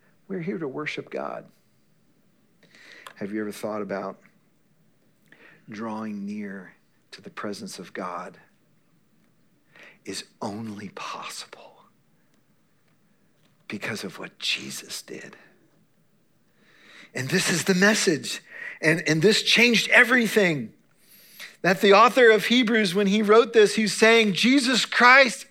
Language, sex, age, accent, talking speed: English, male, 50-69, American, 115 wpm